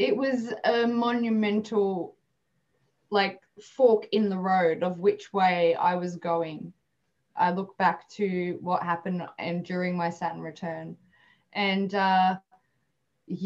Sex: female